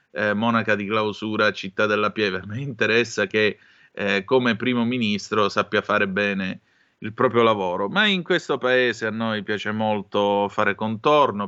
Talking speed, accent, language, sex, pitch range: 155 wpm, native, Italian, male, 105-135 Hz